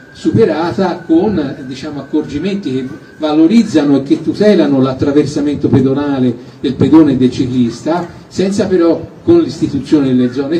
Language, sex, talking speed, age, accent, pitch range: Italian, male, 125 wpm, 50-69, native, 140-170 Hz